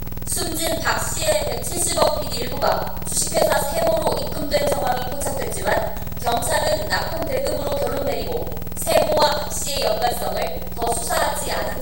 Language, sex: Korean, female